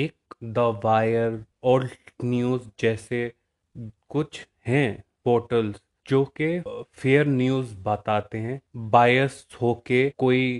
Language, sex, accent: English, male, Indian